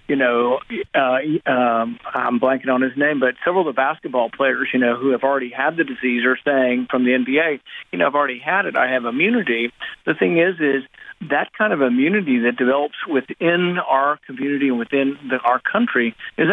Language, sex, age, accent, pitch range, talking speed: English, male, 50-69, American, 130-165 Hz, 200 wpm